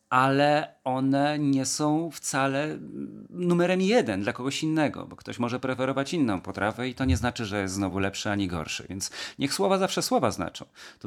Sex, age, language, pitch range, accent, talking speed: male, 40-59, Polish, 100-140 Hz, native, 180 wpm